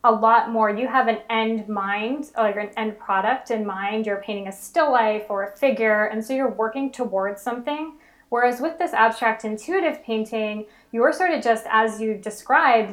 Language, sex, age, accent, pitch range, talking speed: English, female, 20-39, American, 210-235 Hz, 190 wpm